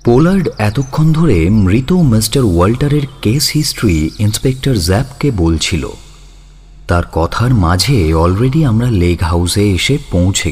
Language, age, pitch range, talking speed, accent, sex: Bengali, 30-49, 85-145 Hz, 115 wpm, native, male